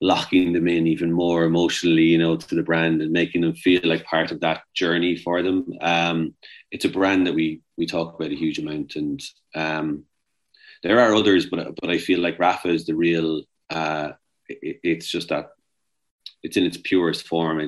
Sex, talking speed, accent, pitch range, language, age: male, 195 wpm, Irish, 80-90 Hz, English, 30-49